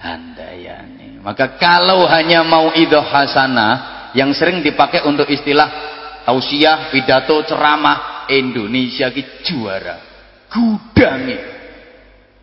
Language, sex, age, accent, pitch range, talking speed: English, male, 30-49, Indonesian, 120-170 Hz, 90 wpm